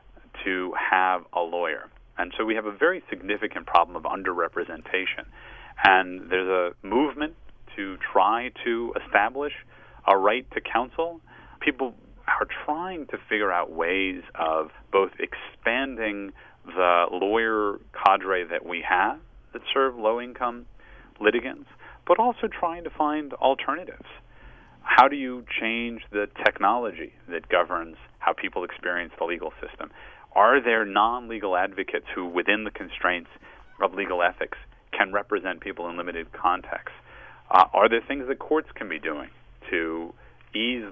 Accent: American